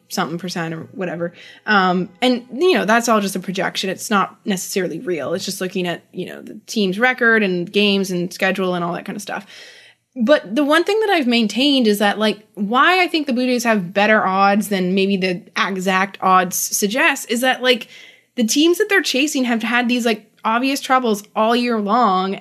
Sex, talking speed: female, 205 wpm